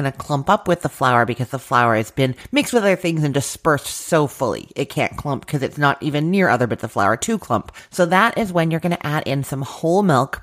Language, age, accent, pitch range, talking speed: English, 30-49, American, 125-155 Hz, 260 wpm